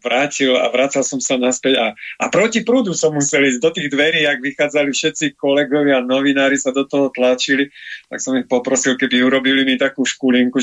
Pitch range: 125-145 Hz